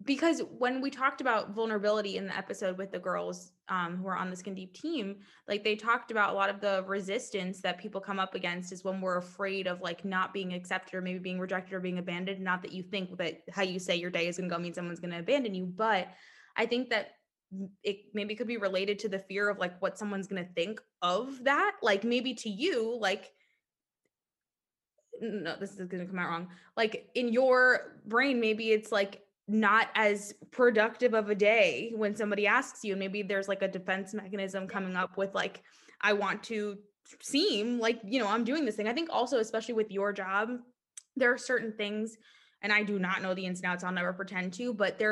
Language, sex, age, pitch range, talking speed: English, female, 20-39, 185-225 Hz, 225 wpm